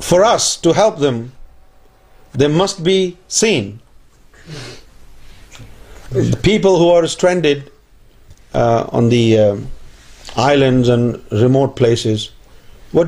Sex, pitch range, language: male, 115-170 Hz, Urdu